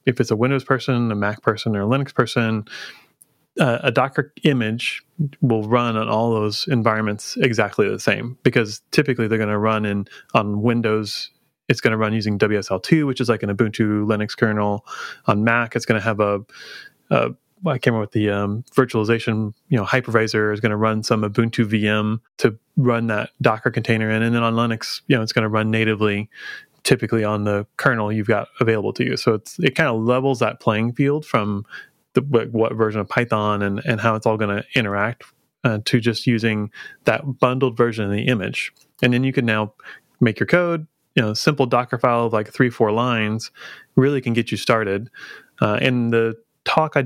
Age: 30-49